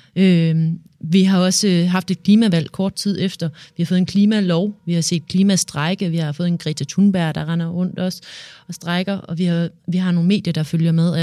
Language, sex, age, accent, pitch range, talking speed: Danish, female, 30-49, native, 165-190 Hz, 220 wpm